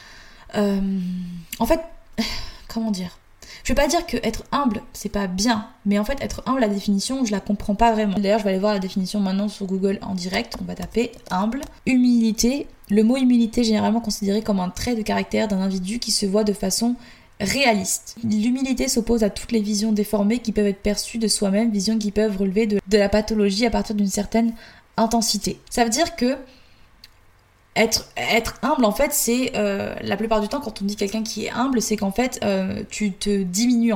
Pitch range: 200-235 Hz